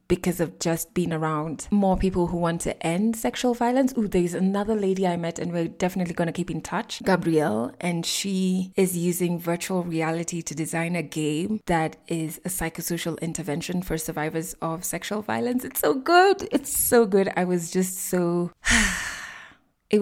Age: 20-39